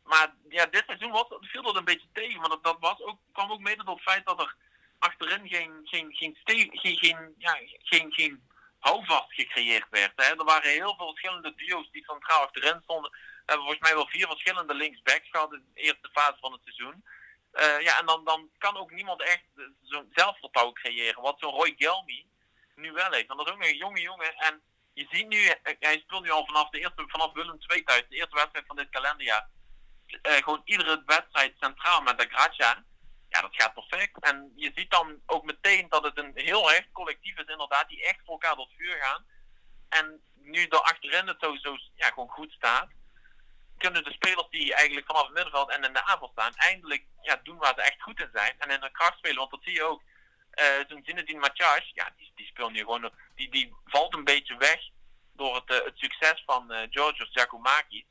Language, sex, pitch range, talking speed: Dutch, male, 145-175 Hz, 215 wpm